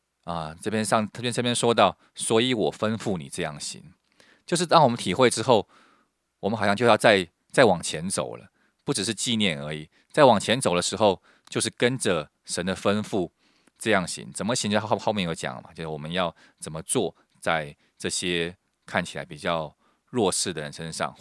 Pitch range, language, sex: 85-115 Hz, Chinese, male